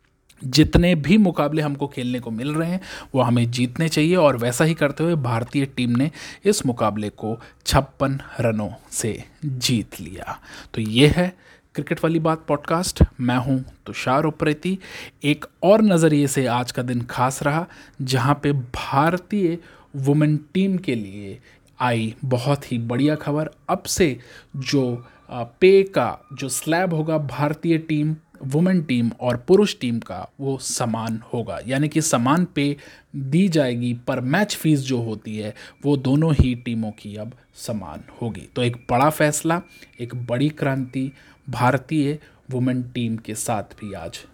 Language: Hindi